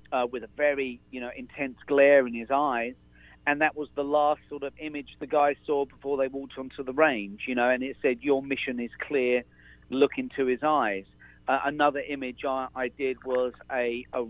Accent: British